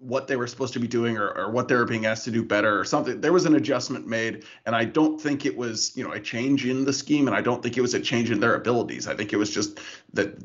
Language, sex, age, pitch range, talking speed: English, male, 20-39, 115-140 Hz, 310 wpm